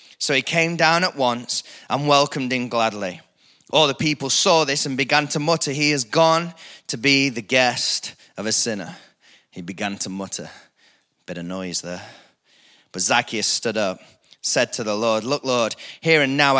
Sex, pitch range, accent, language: male, 120-170 Hz, British, English